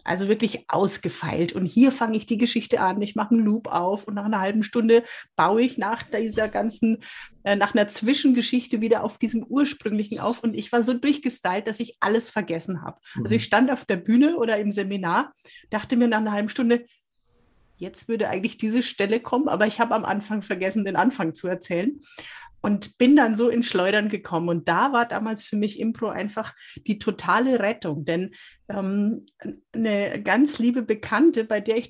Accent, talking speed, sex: German, 190 wpm, female